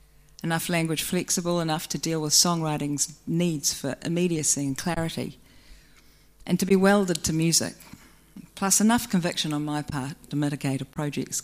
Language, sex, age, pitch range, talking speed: English, female, 40-59, 150-185 Hz, 150 wpm